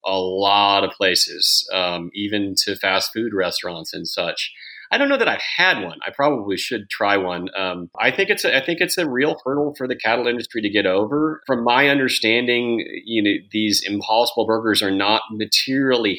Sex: male